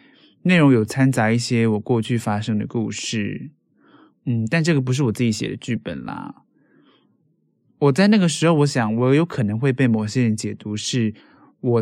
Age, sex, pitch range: 20-39, male, 110-140 Hz